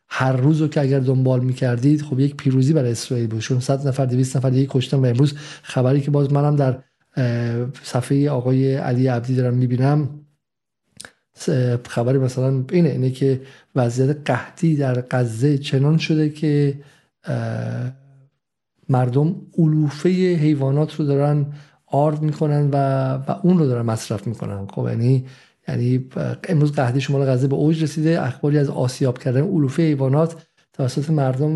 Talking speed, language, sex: 140 wpm, Persian, male